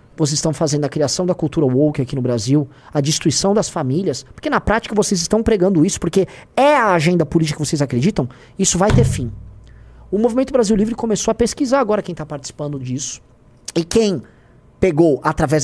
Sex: male